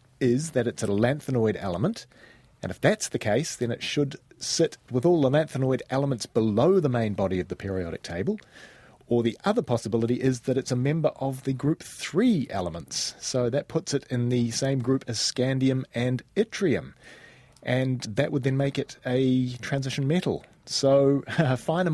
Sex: male